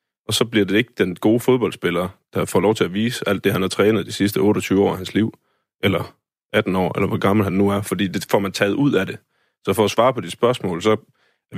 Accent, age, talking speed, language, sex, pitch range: native, 30-49, 270 wpm, Danish, male, 95-115 Hz